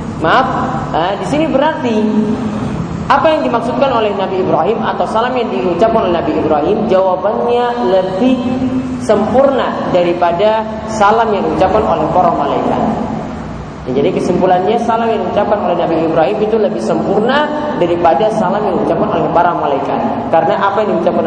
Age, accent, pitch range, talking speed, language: 20-39, native, 185-235 Hz, 145 wpm, Indonesian